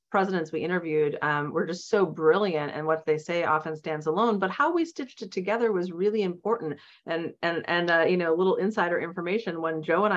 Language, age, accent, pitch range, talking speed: English, 30-49, American, 155-190 Hz, 220 wpm